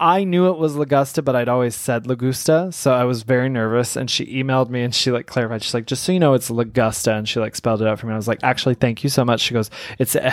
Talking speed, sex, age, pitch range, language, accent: 290 wpm, male, 20-39, 125-165 Hz, English, American